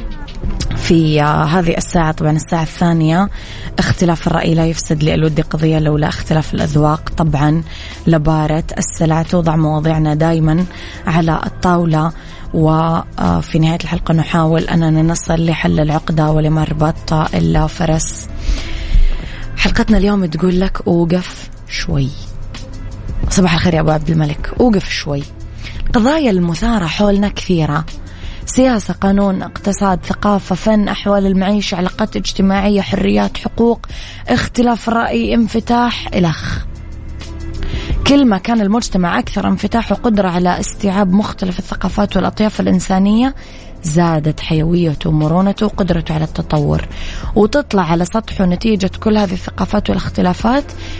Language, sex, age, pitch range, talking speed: Arabic, female, 20-39, 155-200 Hz, 110 wpm